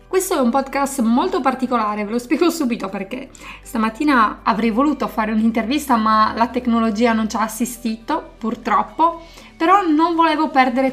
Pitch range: 225-260 Hz